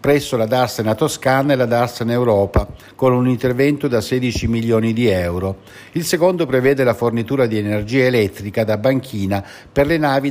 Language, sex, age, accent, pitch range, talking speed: Italian, male, 60-79, native, 110-145 Hz, 170 wpm